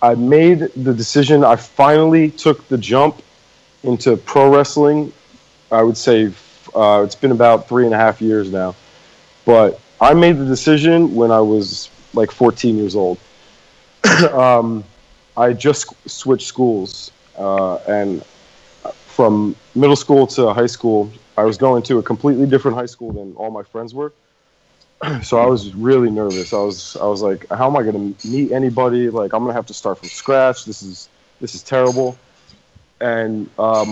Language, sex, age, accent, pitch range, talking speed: English, male, 30-49, American, 110-140 Hz, 170 wpm